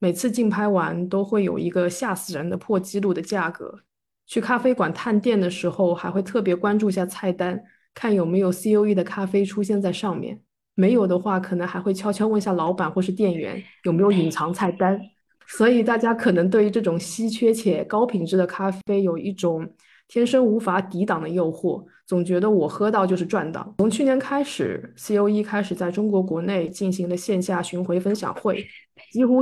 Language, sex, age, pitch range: Chinese, female, 20-39, 180-215 Hz